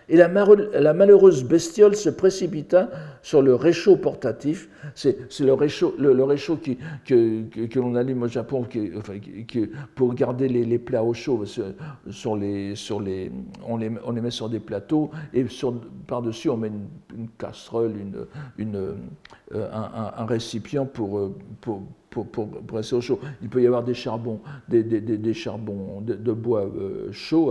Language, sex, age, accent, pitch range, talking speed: French, male, 60-79, French, 115-150 Hz, 185 wpm